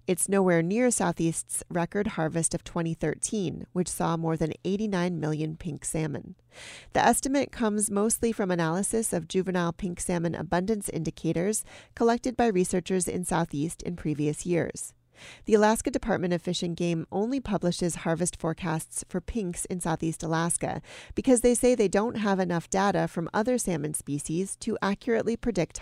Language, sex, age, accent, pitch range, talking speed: English, female, 40-59, American, 165-210 Hz, 155 wpm